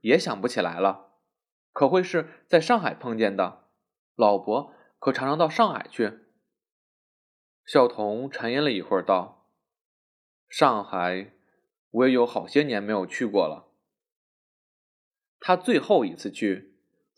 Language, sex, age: Chinese, male, 20-39